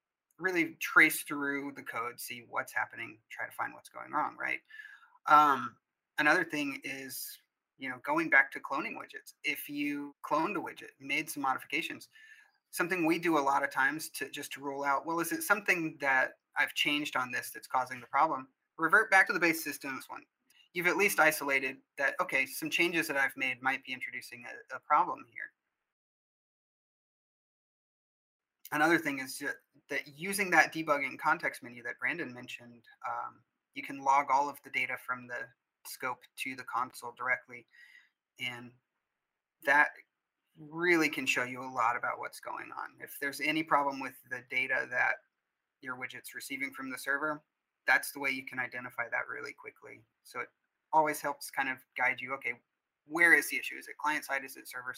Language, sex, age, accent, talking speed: English, male, 30-49, American, 180 wpm